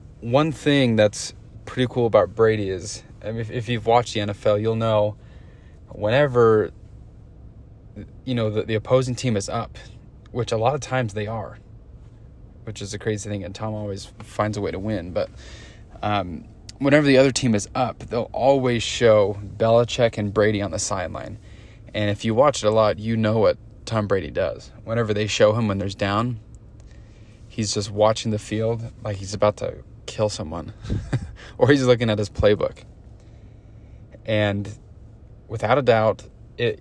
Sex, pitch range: male, 105-115 Hz